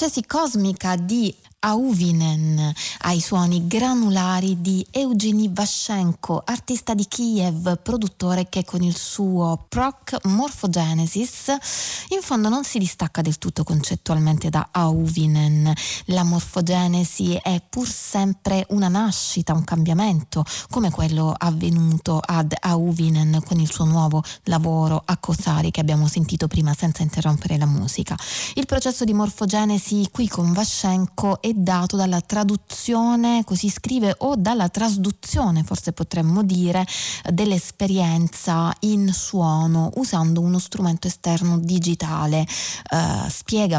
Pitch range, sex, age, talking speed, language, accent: 165-200 Hz, female, 20-39, 115 wpm, Italian, native